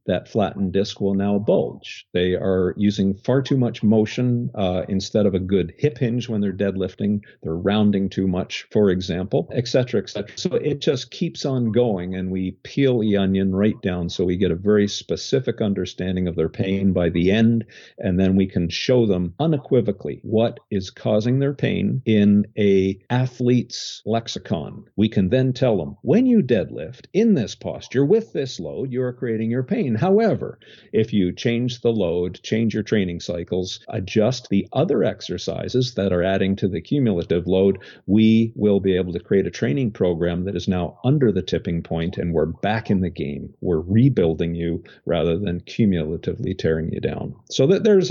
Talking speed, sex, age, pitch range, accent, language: 185 wpm, male, 50-69, 95-115 Hz, American, English